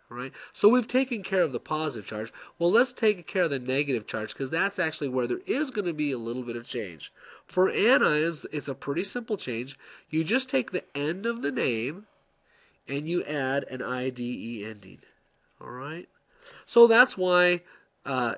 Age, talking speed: 30-49, 195 wpm